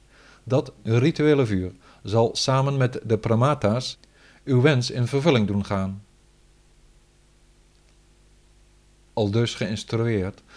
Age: 50-69